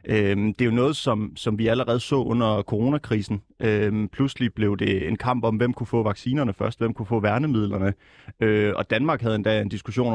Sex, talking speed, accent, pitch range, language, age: male, 190 wpm, native, 105-125 Hz, Danish, 30-49